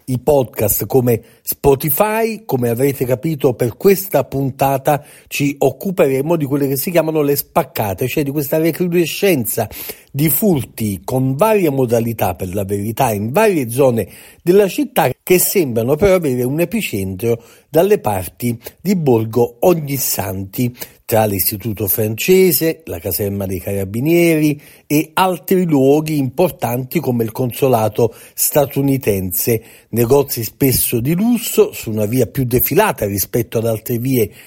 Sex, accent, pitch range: male, native, 115-175 Hz